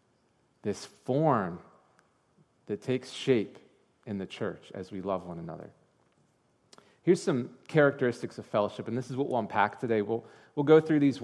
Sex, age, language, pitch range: male, 30-49, English, 105-145 Hz